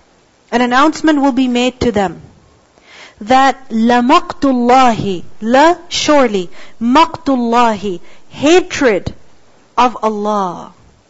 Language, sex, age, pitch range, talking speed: English, female, 40-59, 220-275 Hz, 85 wpm